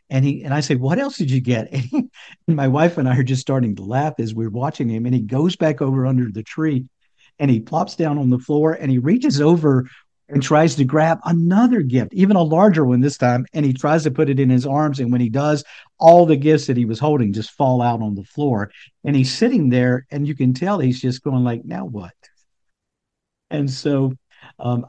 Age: 50-69